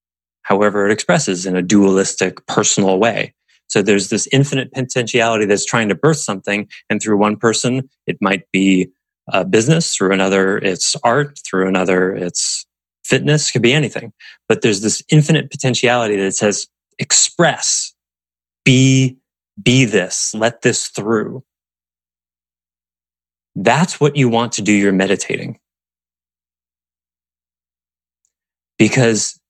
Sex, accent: male, American